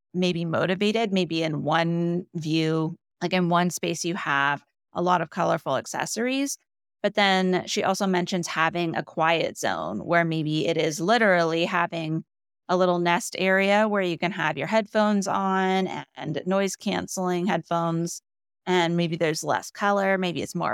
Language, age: English, 30-49